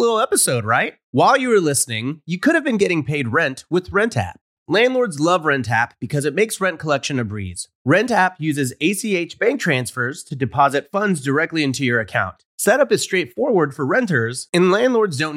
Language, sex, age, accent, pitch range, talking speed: English, male, 30-49, American, 125-190 Hz, 190 wpm